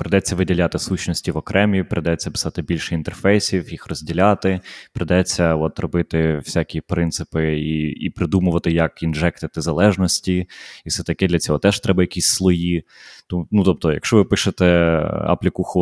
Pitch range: 80-95 Hz